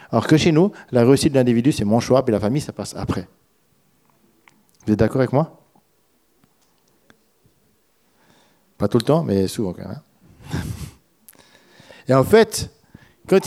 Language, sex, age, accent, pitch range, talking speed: French, male, 50-69, French, 115-170 Hz, 155 wpm